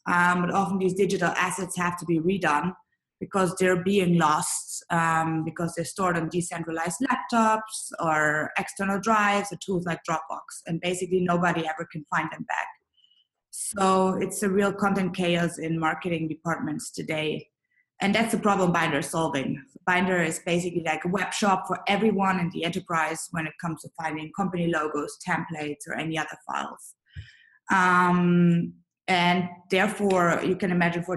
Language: English